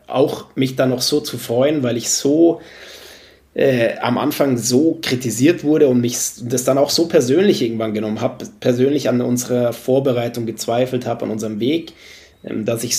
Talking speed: 175 wpm